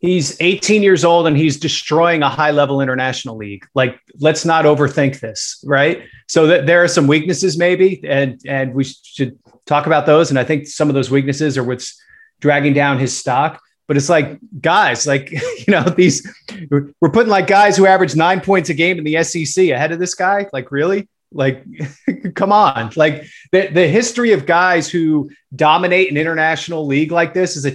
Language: English